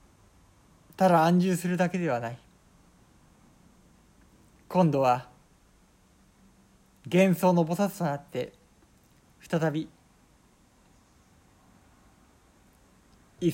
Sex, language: male, Japanese